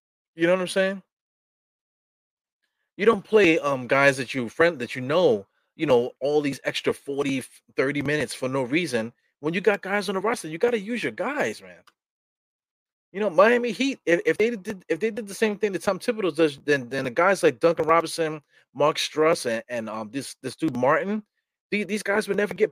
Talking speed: 210 wpm